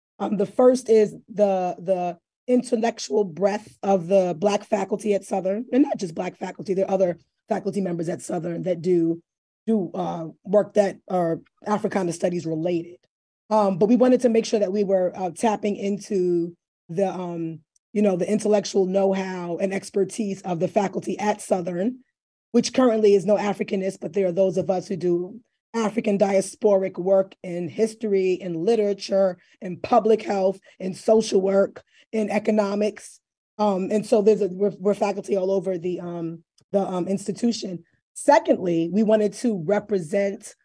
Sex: female